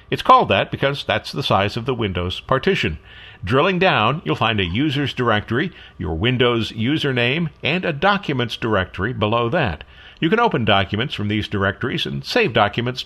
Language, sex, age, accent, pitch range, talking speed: English, male, 50-69, American, 105-145 Hz, 170 wpm